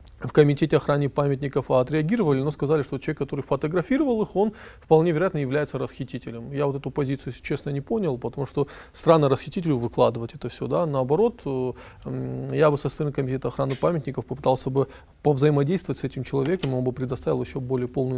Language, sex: Russian, male